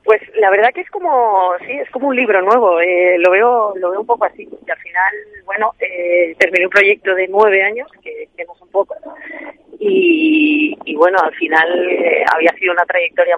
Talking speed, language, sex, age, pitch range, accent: 205 wpm, Spanish, female, 30-49, 180-235 Hz, Spanish